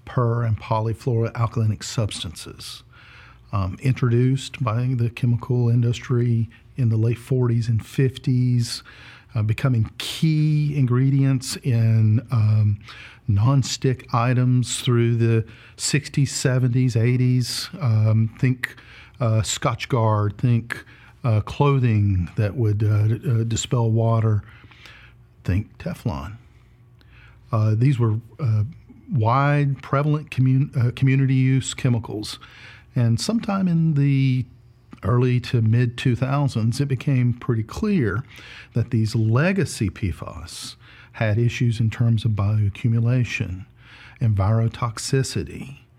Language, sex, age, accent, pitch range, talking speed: English, male, 50-69, American, 110-130 Hz, 105 wpm